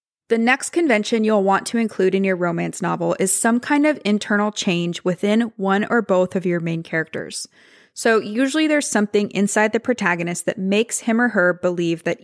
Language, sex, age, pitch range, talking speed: English, female, 20-39, 180-225 Hz, 190 wpm